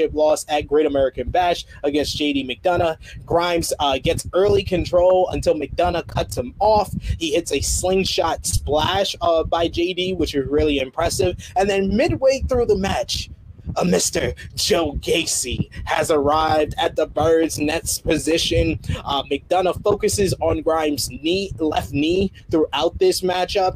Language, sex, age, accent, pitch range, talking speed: English, male, 20-39, American, 150-180 Hz, 150 wpm